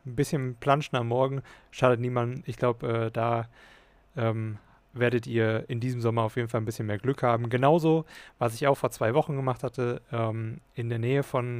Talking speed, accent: 200 wpm, German